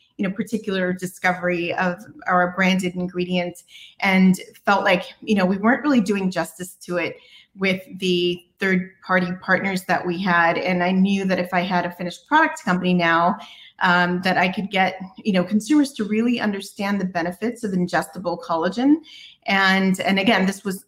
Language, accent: English, American